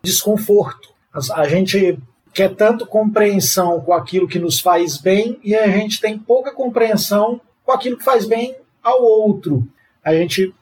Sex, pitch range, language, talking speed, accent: male, 165-210 Hz, Portuguese, 155 wpm, Brazilian